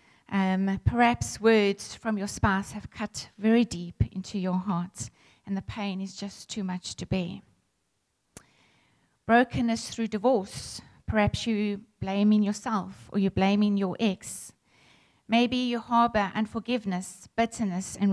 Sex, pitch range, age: female, 185-215 Hz, 30-49